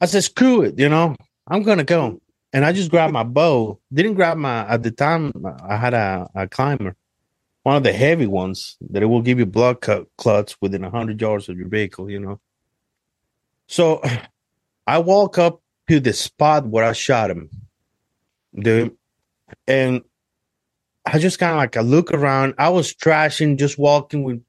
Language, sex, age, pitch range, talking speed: English, male, 30-49, 110-145 Hz, 185 wpm